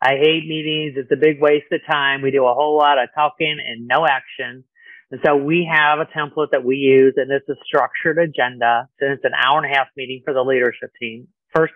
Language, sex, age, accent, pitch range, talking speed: English, male, 40-59, American, 140-180 Hz, 235 wpm